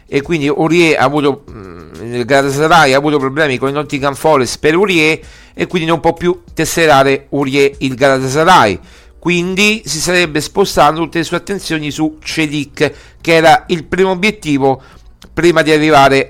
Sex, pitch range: male, 120-155 Hz